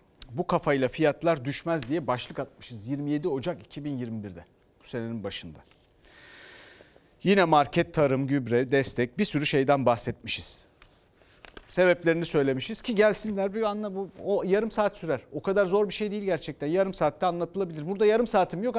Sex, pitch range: male, 145-220 Hz